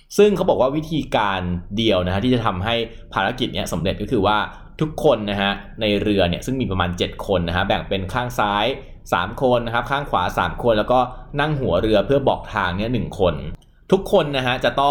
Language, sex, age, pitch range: Thai, male, 20-39, 95-130 Hz